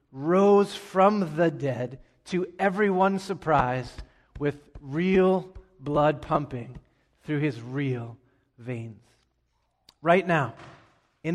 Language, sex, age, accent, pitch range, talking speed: English, male, 30-49, American, 140-185 Hz, 95 wpm